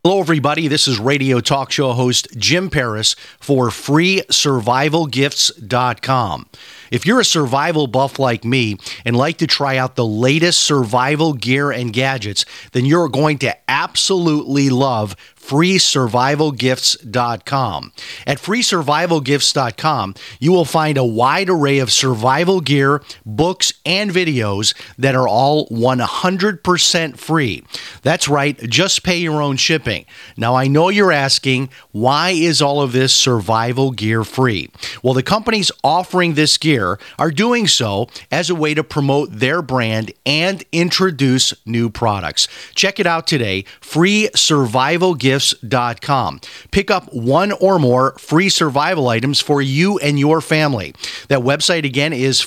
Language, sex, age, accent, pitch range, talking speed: English, male, 40-59, American, 125-160 Hz, 135 wpm